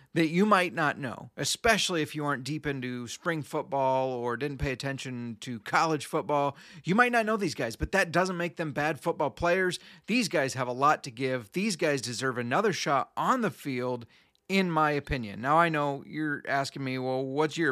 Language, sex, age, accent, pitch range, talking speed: English, male, 30-49, American, 130-160 Hz, 205 wpm